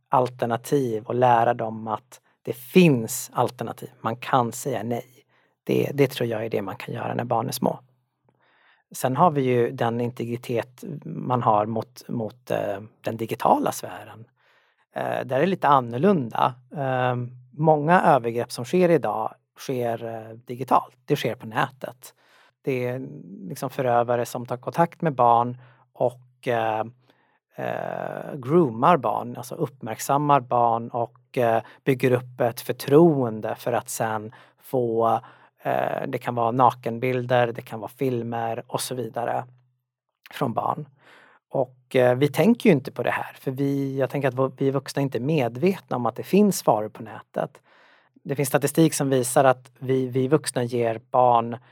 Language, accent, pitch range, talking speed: Swedish, native, 115-140 Hz, 155 wpm